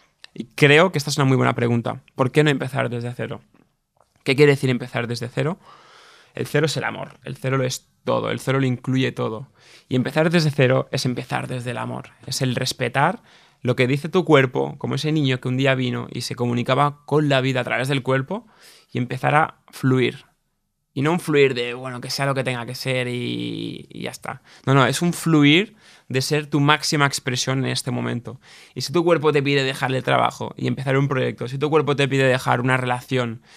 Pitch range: 125-145 Hz